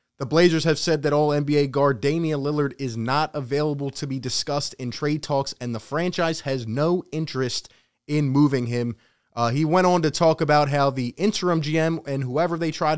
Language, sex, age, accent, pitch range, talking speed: English, male, 20-39, American, 140-175 Hz, 195 wpm